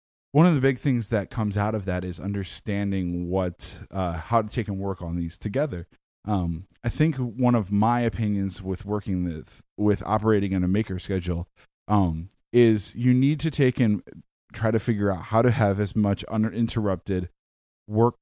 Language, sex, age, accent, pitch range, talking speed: English, male, 20-39, American, 90-115 Hz, 185 wpm